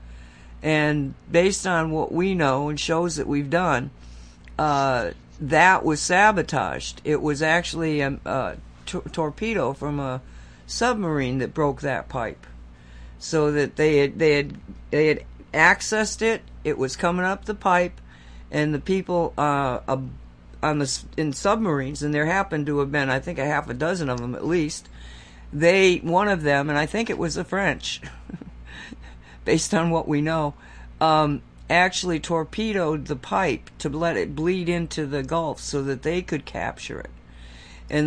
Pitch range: 130-170 Hz